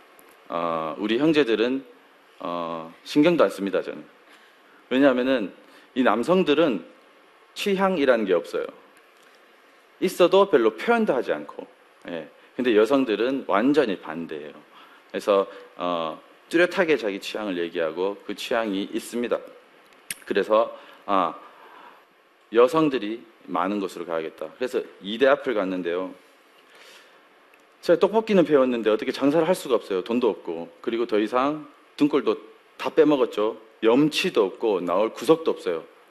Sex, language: male, Korean